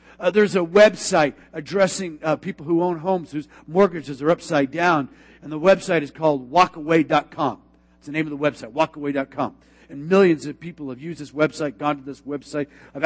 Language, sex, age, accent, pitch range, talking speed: English, male, 50-69, American, 145-220 Hz, 190 wpm